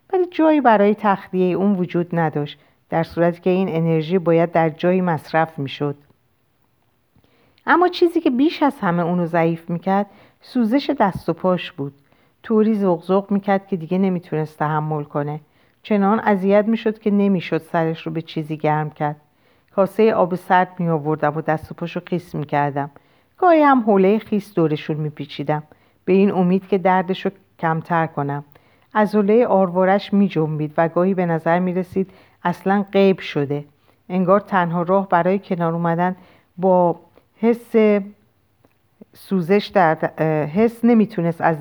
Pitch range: 155-195 Hz